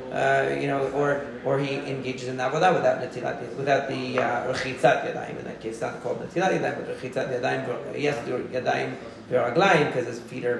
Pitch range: 125-155 Hz